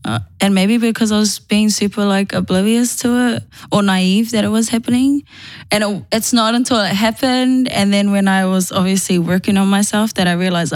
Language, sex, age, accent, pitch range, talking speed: English, female, 10-29, Australian, 175-200 Hz, 205 wpm